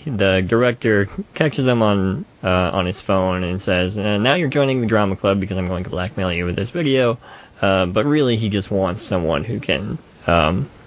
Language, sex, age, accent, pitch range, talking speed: English, male, 20-39, American, 95-110 Hz, 205 wpm